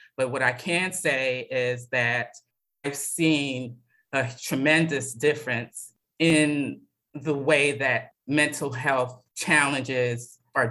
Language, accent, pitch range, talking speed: English, American, 125-150 Hz, 110 wpm